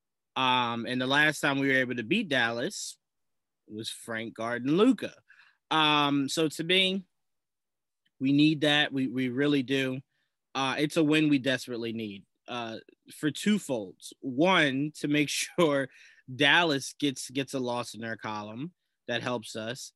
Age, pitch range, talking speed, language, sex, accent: 20-39, 120-150 Hz, 155 wpm, English, male, American